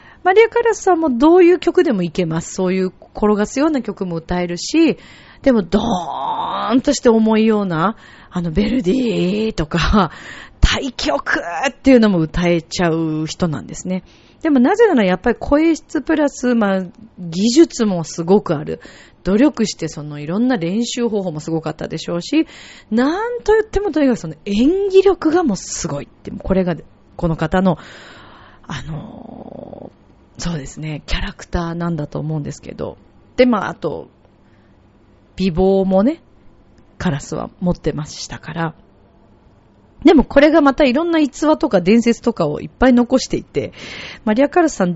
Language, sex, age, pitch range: Japanese, female, 40-59, 170-275 Hz